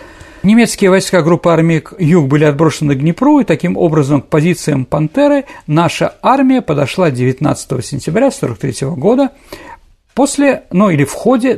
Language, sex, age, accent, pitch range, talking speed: Russian, male, 50-69, native, 145-235 Hz, 140 wpm